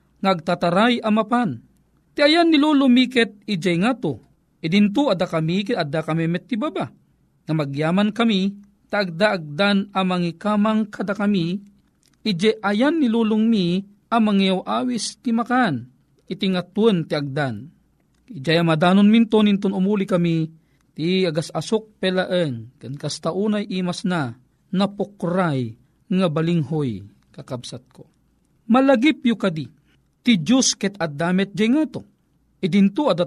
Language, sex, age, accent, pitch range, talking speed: Filipino, male, 40-59, native, 175-235 Hz, 115 wpm